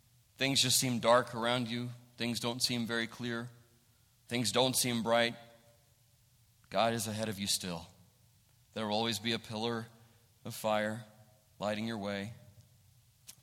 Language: English